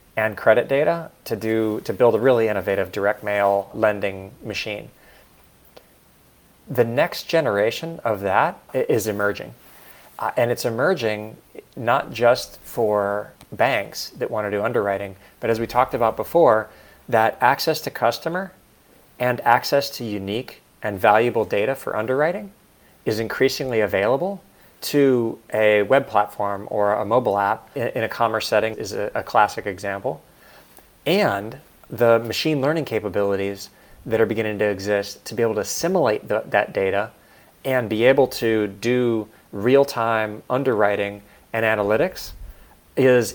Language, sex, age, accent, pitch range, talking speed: English, male, 30-49, American, 105-125 Hz, 140 wpm